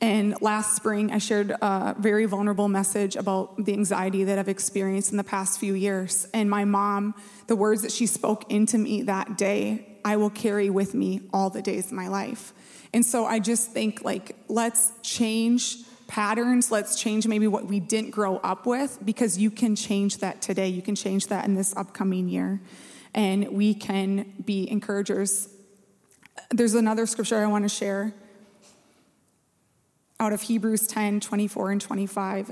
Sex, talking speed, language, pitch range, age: female, 170 wpm, English, 195-220 Hz, 20-39